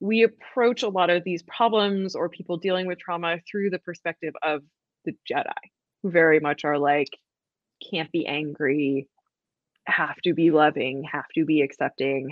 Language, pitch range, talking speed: English, 155-195 Hz, 165 wpm